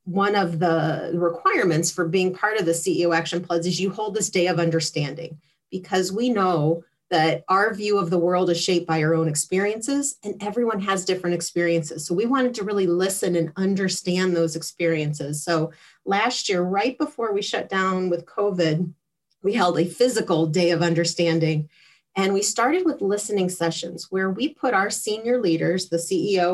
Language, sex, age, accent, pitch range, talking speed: English, female, 30-49, American, 170-205 Hz, 180 wpm